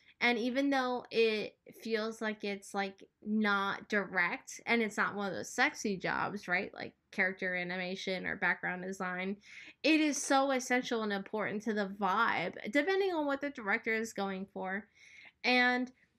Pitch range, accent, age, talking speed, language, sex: 205-255 Hz, American, 10-29, 160 wpm, English, female